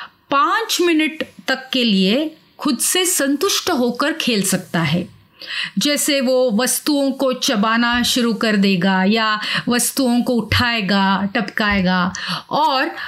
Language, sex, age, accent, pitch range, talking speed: Hindi, female, 30-49, native, 200-280 Hz, 120 wpm